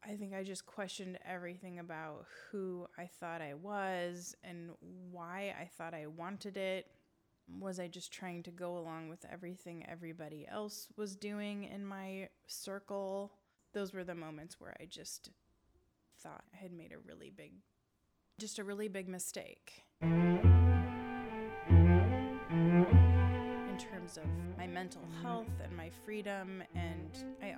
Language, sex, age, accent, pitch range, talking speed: English, female, 20-39, American, 160-195 Hz, 140 wpm